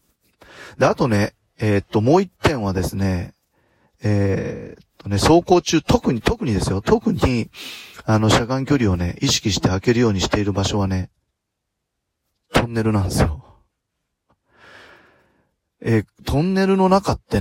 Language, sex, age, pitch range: Japanese, male, 30-49, 95-125 Hz